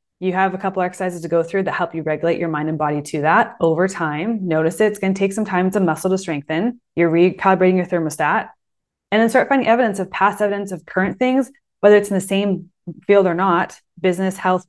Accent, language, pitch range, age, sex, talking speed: American, English, 180-215 Hz, 20-39, female, 235 wpm